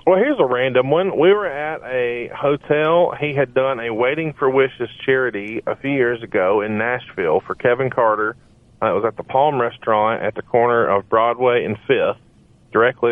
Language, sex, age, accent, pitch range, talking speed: English, male, 40-59, American, 115-155 Hz, 190 wpm